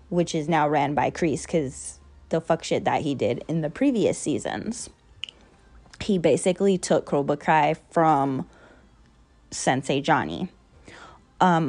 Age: 10-29